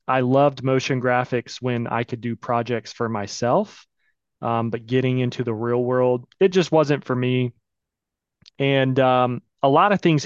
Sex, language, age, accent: male, English, 30-49, American